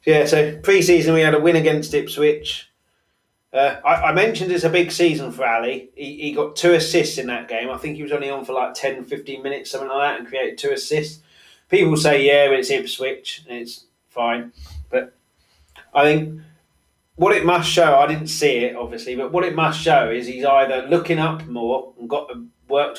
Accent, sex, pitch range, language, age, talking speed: British, male, 120-155 Hz, English, 30-49, 210 wpm